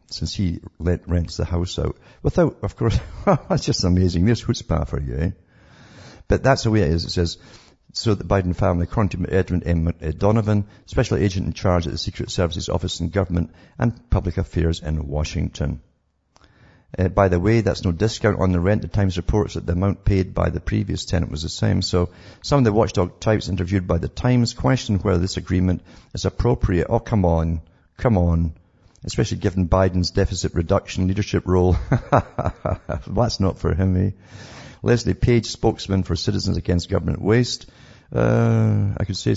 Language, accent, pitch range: English, British, 85-105 Hz